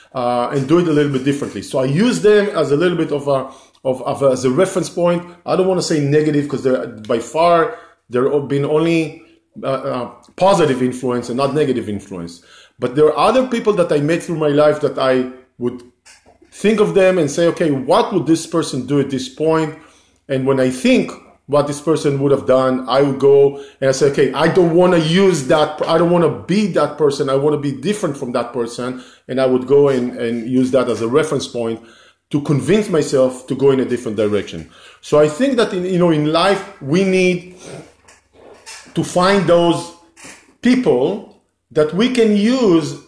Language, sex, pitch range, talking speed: English, male, 135-180 Hz, 215 wpm